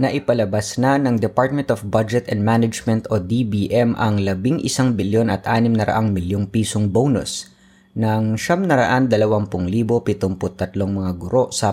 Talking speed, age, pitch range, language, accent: 150 wpm, 20-39, 95-115 Hz, Filipino, native